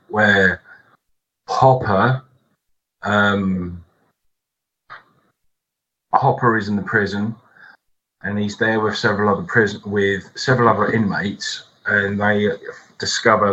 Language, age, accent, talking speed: English, 30-49, British, 100 wpm